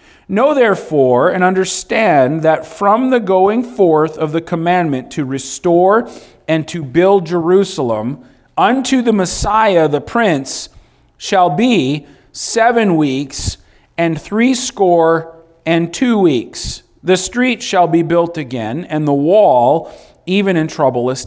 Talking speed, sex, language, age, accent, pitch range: 125 wpm, male, English, 40-59, American, 130-185 Hz